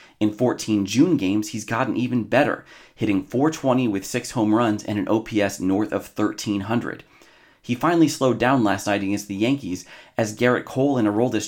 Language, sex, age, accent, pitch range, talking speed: English, male, 30-49, American, 105-130 Hz, 180 wpm